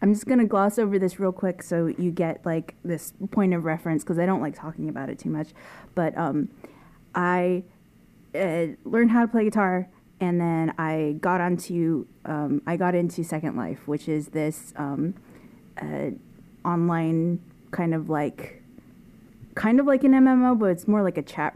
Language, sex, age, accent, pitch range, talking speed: English, female, 30-49, American, 160-195 Hz, 180 wpm